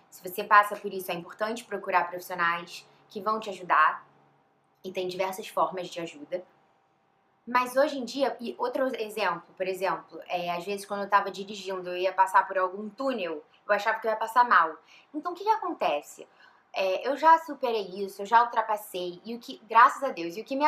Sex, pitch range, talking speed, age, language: female, 190-265 Hz, 205 wpm, 10-29, Portuguese